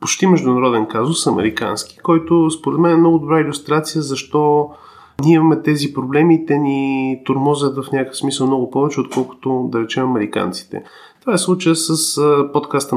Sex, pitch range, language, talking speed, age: male, 130-175 Hz, Bulgarian, 155 wpm, 30-49